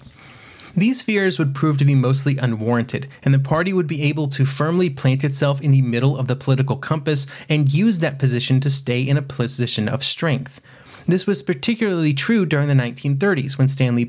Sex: male